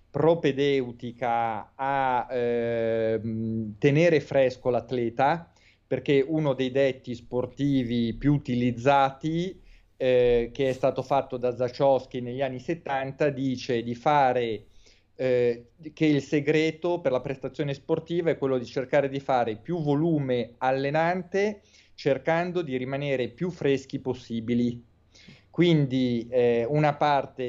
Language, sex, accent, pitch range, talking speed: Italian, male, native, 120-140 Hz, 115 wpm